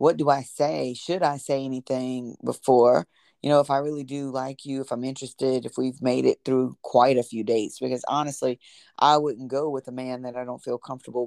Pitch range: 125-150 Hz